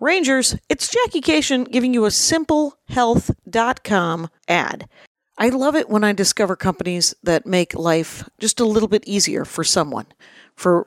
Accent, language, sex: American, English, female